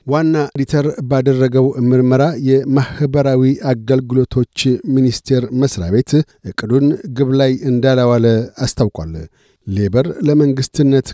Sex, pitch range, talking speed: male, 125-140 Hz, 85 wpm